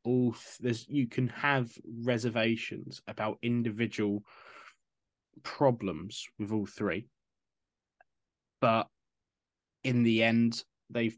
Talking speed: 95 wpm